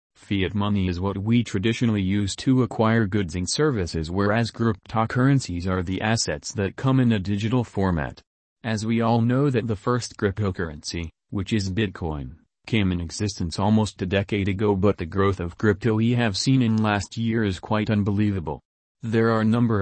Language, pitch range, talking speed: English, 95-115 Hz, 180 wpm